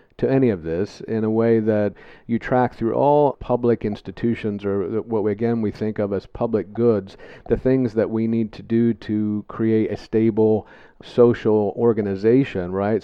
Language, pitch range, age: English, 105-120 Hz, 50-69